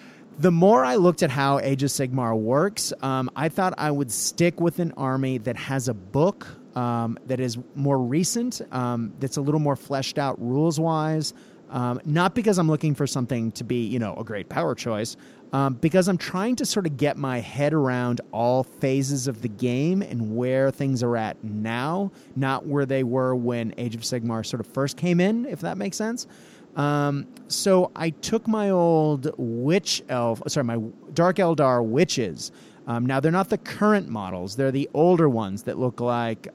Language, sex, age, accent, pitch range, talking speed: English, male, 30-49, American, 125-165 Hz, 190 wpm